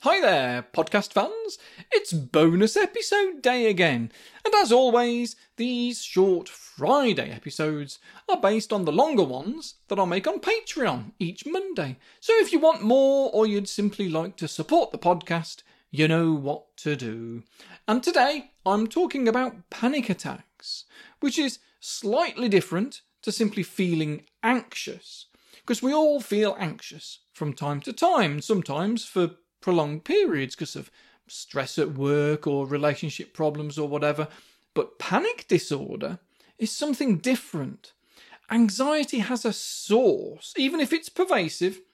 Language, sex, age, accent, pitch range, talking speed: English, male, 40-59, British, 165-260 Hz, 140 wpm